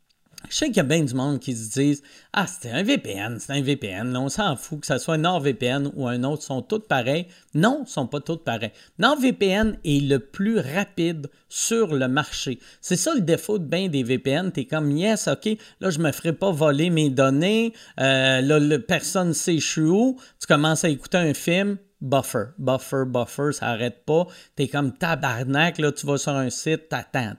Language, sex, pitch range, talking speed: French, male, 140-200 Hz, 230 wpm